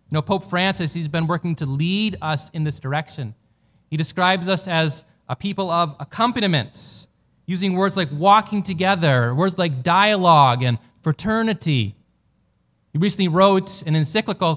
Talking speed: 150 wpm